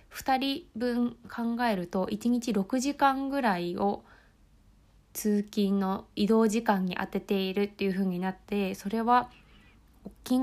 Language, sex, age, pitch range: Japanese, female, 20-39, 195-245 Hz